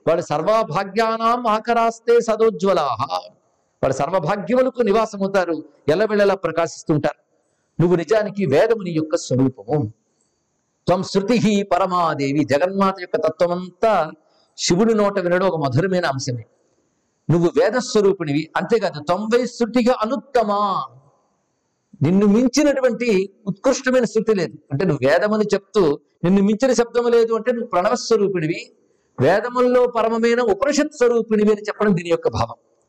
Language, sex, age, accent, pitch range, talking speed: Telugu, male, 50-69, native, 165-225 Hz, 115 wpm